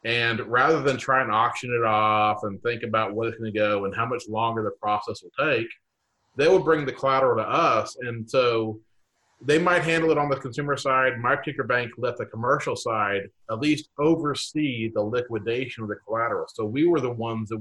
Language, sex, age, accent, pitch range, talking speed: English, male, 40-59, American, 115-145 Hz, 210 wpm